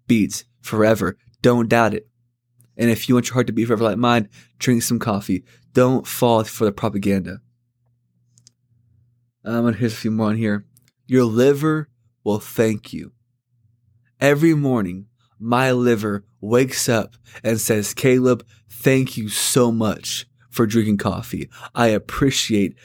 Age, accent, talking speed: 20-39, American, 145 wpm